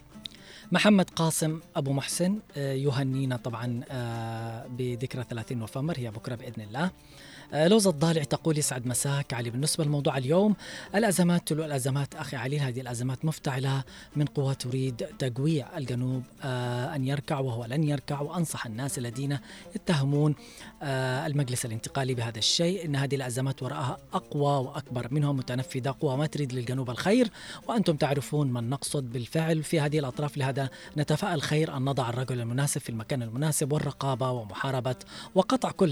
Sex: female